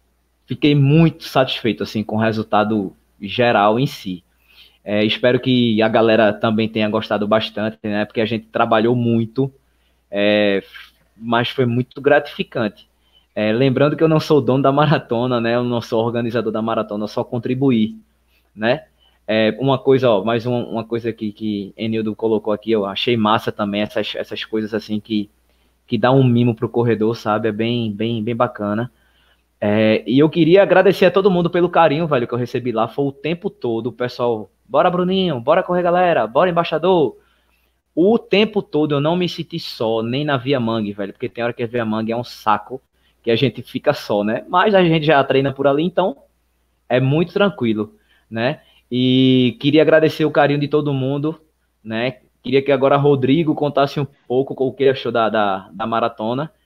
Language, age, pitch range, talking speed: Portuguese, 20-39, 110-145 Hz, 190 wpm